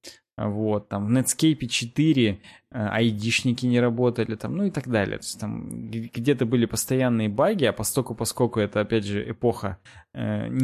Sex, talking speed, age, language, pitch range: male, 150 wpm, 20-39, Russian, 110-130 Hz